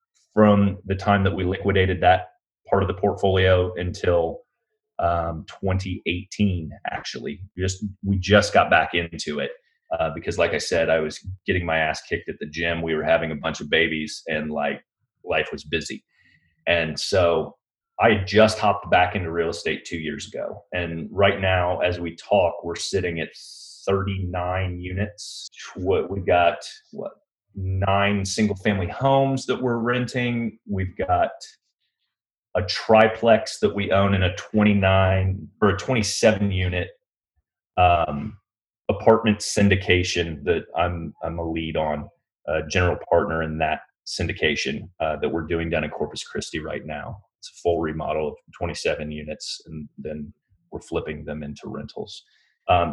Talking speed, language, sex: 155 wpm, English, male